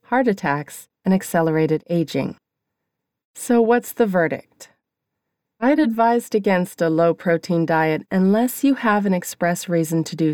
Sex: female